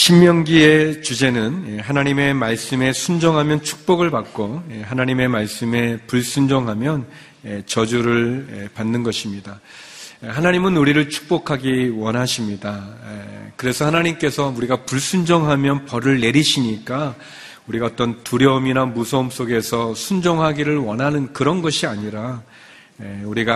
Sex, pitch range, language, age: male, 115-150 Hz, Korean, 40-59